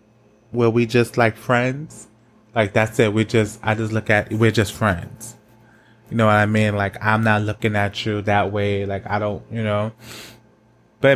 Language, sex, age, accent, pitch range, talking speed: English, male, 20-39, American, 105-120 Hz, 195 wpm